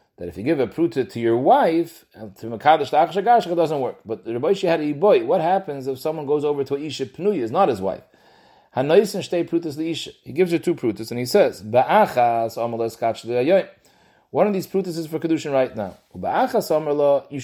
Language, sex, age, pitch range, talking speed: English, male, 40-59, 130-165 Hz, 180 wpm